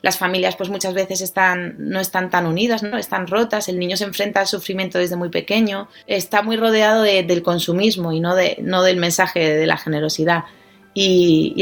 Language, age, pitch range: Spanish, 30-49, 185-220 Hz